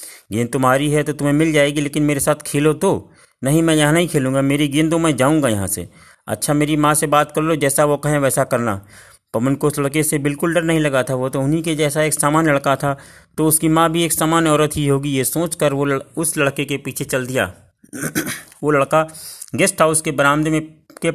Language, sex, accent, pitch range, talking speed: Hindi, male, native, 135-160 Hz, 230 wpm